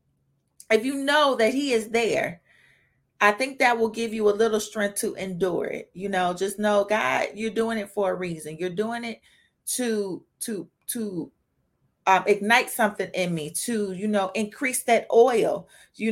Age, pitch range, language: 30-49, 200-240 Hz, English